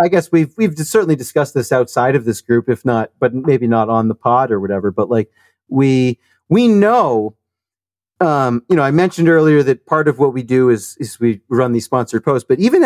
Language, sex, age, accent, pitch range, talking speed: English, male, 40-59, American, 130-190 Hz, 220 wpm